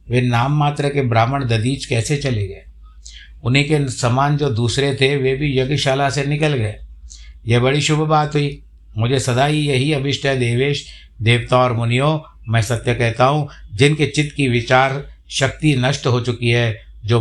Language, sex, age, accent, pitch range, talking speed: Hindi, male, 60-79, native, 105-135 Hz, 175 wpm